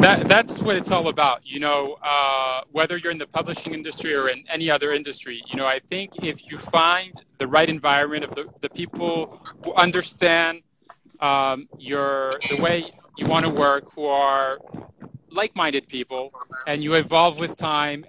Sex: male